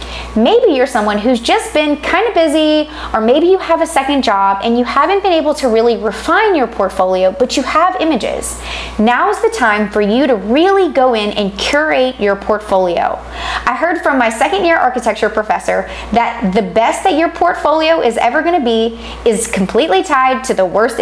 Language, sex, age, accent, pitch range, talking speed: English, female, 20-39, American, 215-315 Hz, 190 wpm